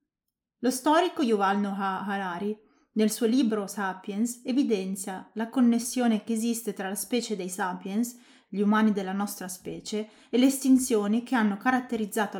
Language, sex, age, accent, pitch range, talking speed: Italian, female, 30-49, native, 205-250 Hz, 145 wpm